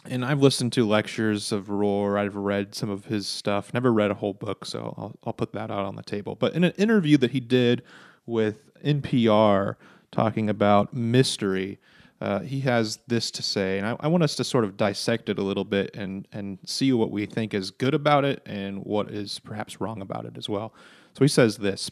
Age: 30-49